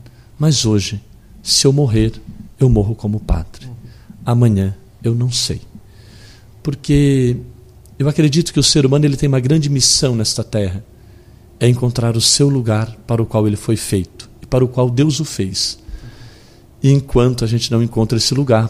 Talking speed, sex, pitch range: 170 wpm, male, 105-130 Hz